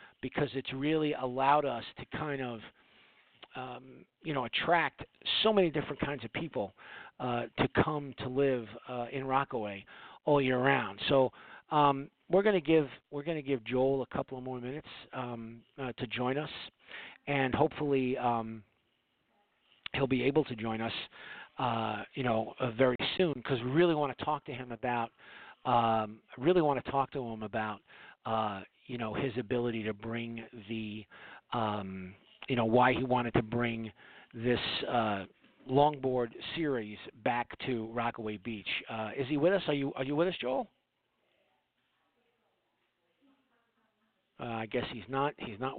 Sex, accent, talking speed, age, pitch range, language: male, American, 160 wpm, 40-59, 115-140 Hz, English